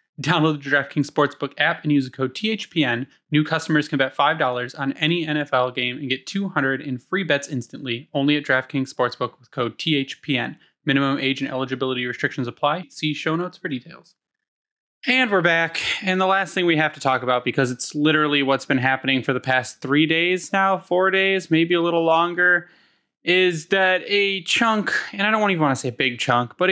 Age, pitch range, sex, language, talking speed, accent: 10-29, 135-175 Hz, male, English, 200 wpm, American